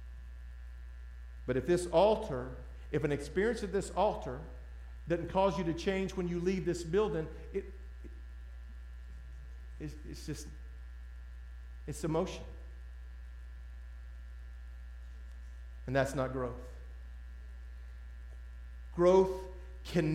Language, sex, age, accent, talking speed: English, male, 50-69, American, 100 wpm